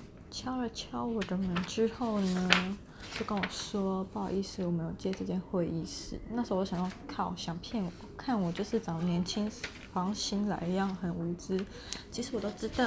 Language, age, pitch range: Chinese, 20-39, 185-225 Hz